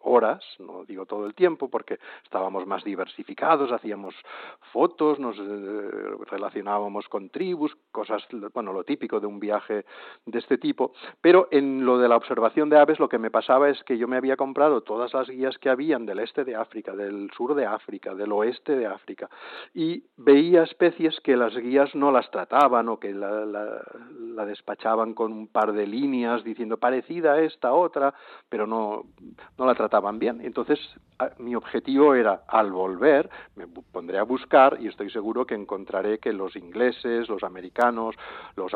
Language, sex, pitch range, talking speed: Spanish, male, 105-140 Hz, 175 wpm